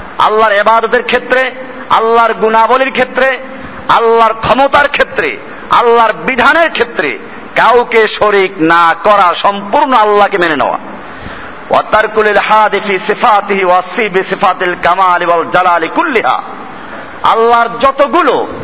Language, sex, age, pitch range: Bengali, male, 50-69, 220-275 Hz